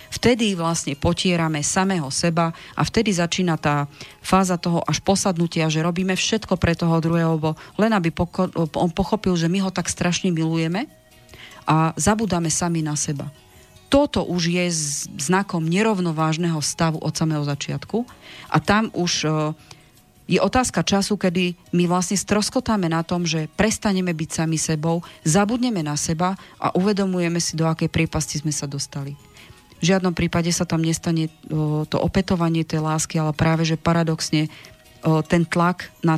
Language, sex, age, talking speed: Slovak, female, 40-59, 150 wpm